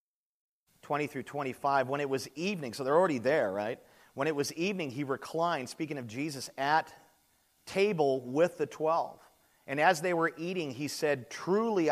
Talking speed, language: 165 wpm, English